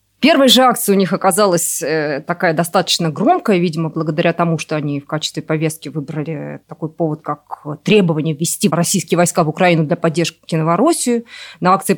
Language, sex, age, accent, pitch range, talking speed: Russian, female, 20-39, native, 160-200 Hz, 160 wpm